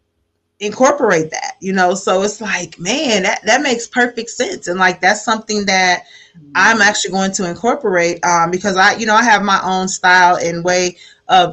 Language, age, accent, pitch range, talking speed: English, 30-49, American, 170-210 Hz, 185 wpm